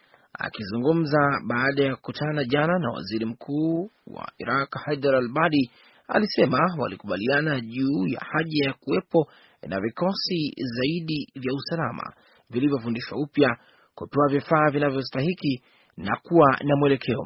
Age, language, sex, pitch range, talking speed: 30-49, Swahili, male, 130-155 Hz, 115 wpm